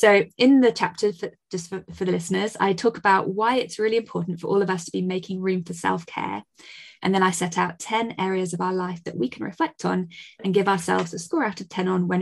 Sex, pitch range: female, 185-230 Hz